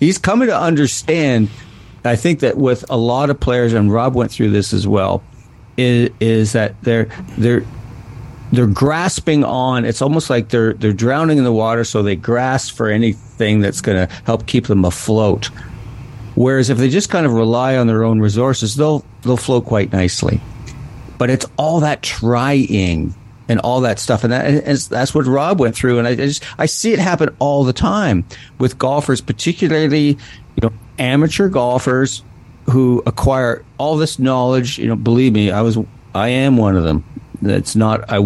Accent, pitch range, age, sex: American, 110-135 Hz, 50-69, male